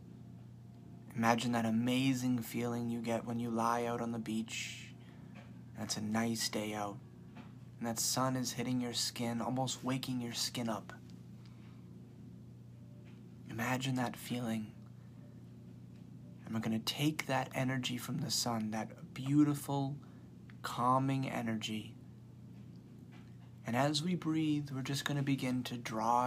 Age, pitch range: 30-49, 115-130 Hz